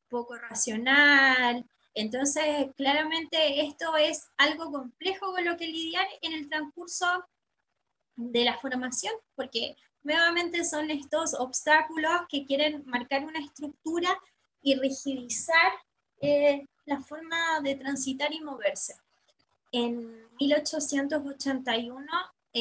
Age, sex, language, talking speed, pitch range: 20-39, female, Spanish, 105 wpm, 240-300 Hz